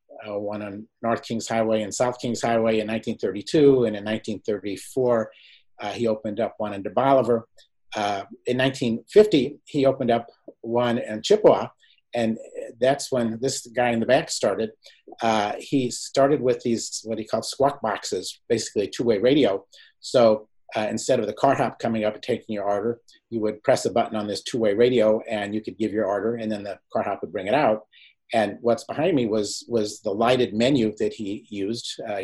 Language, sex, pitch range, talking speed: English, male, 105-120 Hz, 195 wpm